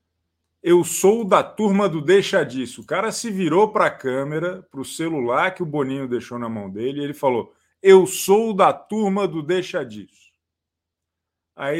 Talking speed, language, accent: 180 wpm, Portuguese, Brazilian